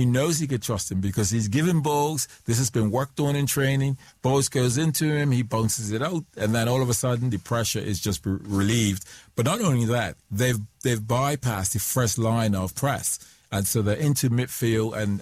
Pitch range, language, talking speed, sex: 105-130 Hz, English, 215 wpm, male